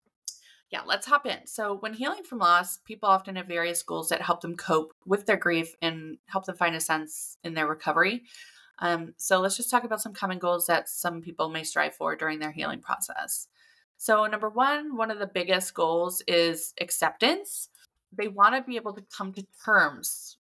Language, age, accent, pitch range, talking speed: English, 20-39, American, 170-215 Hz, 200 wpm